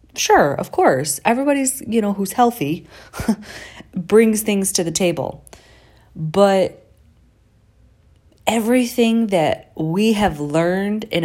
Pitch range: 125-180 Hz